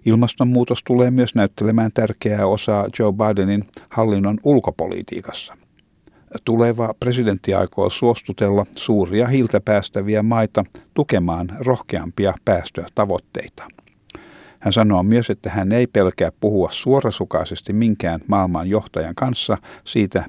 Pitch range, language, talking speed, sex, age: 95-115 Hz, Finnish, 100 wpm, male, 60-79